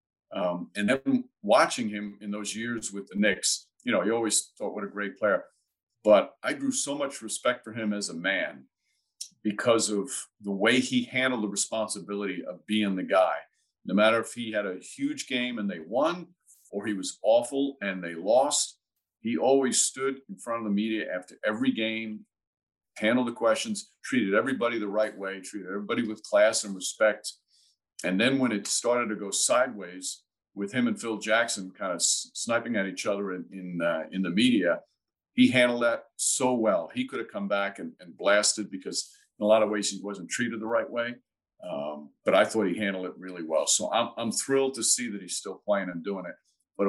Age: 50-69